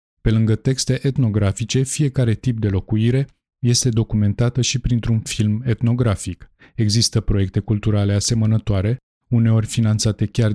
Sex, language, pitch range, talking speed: male, Romanian, 100-120 Hz, 120 wpm